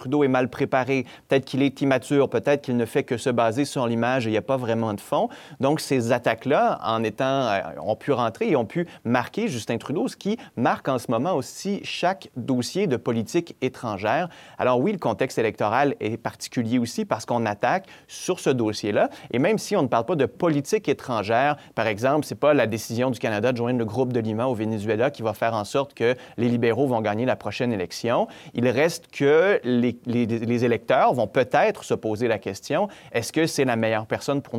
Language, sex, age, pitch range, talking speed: French, male, 30-49, 110-135 Hz, 215 wpm